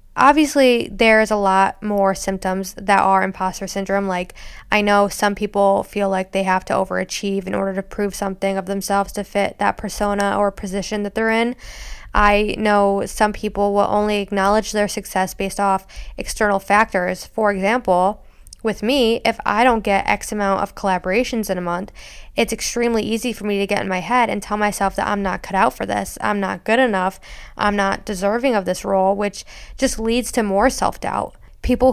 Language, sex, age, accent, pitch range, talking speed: English, female, 10-29, American, 195-220 Hz, 190 wpm